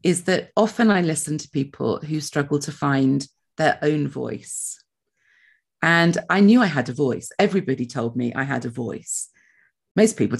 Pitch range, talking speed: 135-175 Hz, 175 wpm